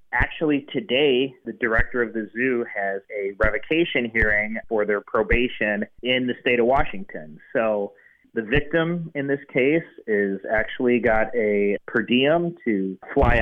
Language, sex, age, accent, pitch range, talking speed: English, male, 30-49, American, 105-125 Hz, 150 wpm